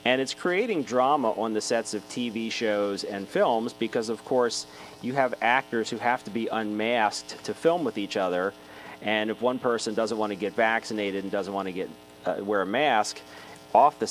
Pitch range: 100-120 Hz